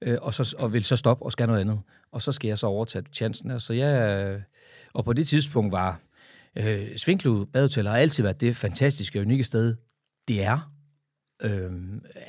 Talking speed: 180 wpm